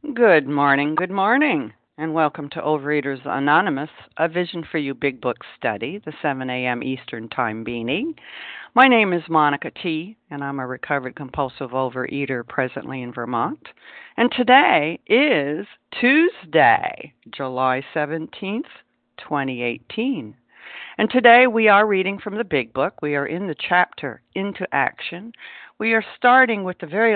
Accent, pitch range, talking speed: American, 140-185 Hz, 145 wpm